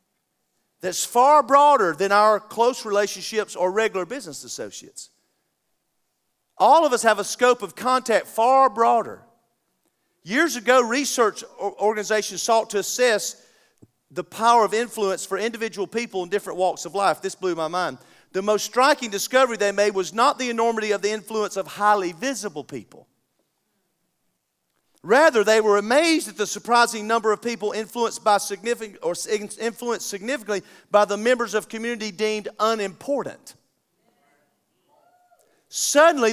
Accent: American